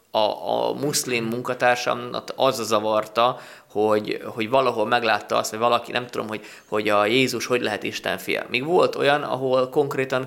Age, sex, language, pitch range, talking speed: 20-39, male, Hungarian, 110-125 Hz, 165 wpm